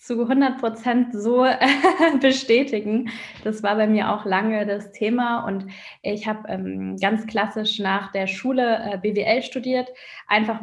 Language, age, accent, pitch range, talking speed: German, 20-39, German, 205-250 Hz, 140 wpm